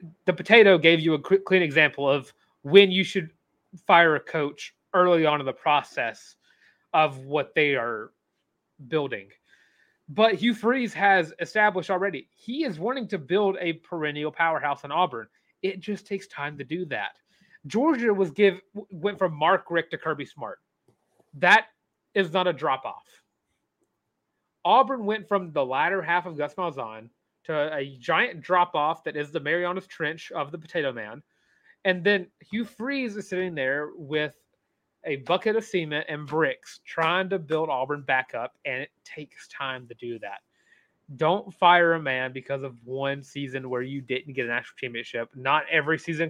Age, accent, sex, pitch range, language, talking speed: 30-49, American, male, 145-185 Hz, English, 165 wpm